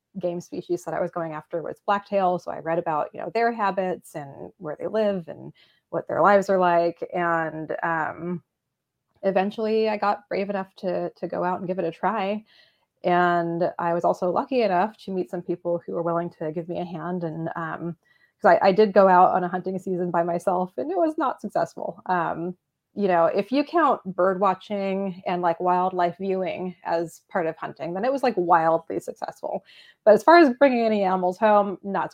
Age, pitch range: 20-39, 170-200 Hz